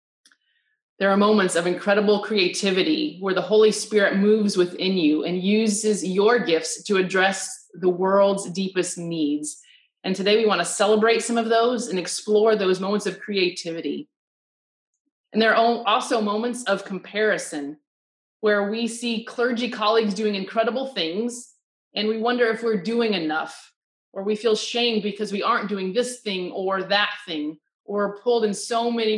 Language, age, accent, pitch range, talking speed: English, 30-49, American, 185-225 Hz, 160 wpm